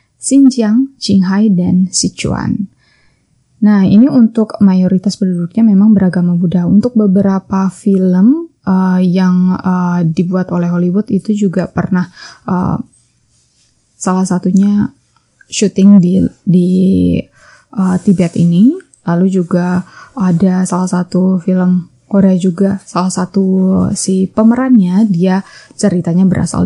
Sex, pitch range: female, 185-220 Hz